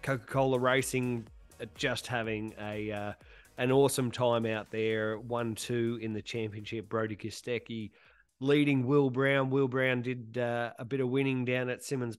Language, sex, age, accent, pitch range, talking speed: English, male, 20-39, Australian, 110-130 Hz, 160 wpm